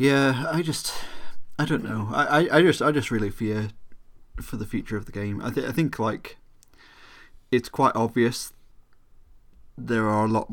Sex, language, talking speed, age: male, English, 175 wpm, 30-49